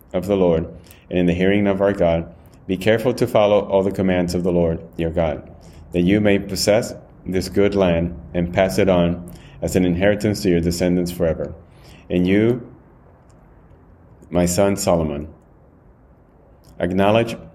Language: English